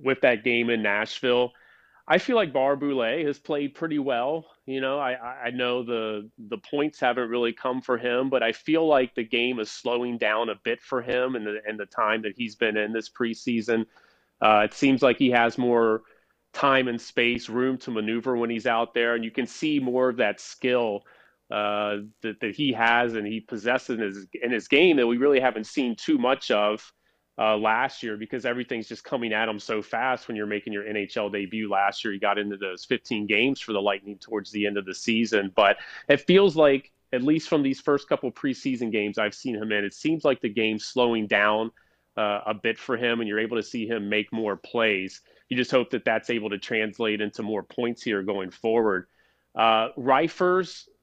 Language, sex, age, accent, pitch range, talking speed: English, male, 30-49, American, 110-135 Hz, 215 wpm